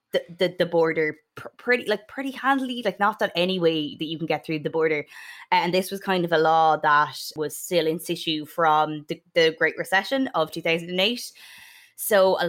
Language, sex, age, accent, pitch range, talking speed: English, female, 20-39, Irish, 155-180 Hz, 190 wpm